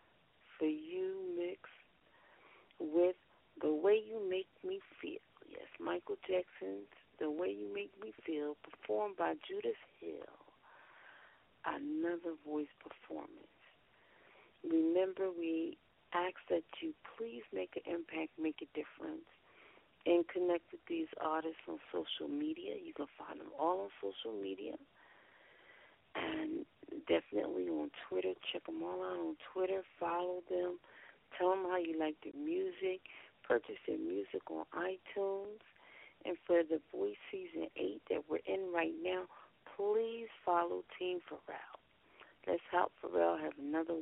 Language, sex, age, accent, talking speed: English, female, 40-59, American, 135 wpm